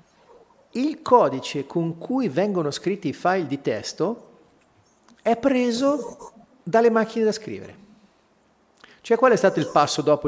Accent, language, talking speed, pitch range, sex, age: native, Italian, 135 wpm, 150-230 Hz, male, 50-69